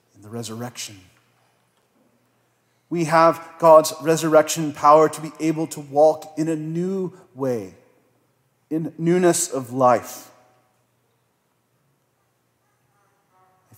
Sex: male